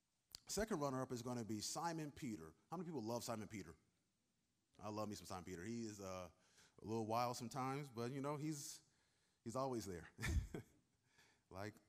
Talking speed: 175 wpm